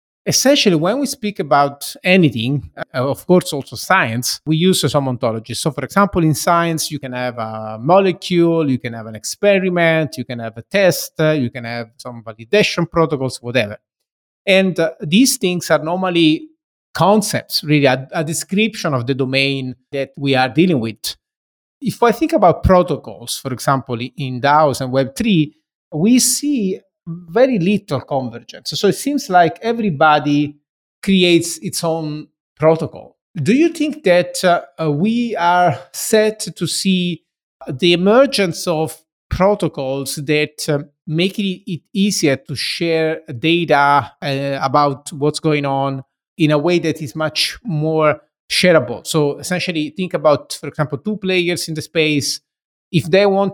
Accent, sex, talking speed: Italian, male, 150 wpm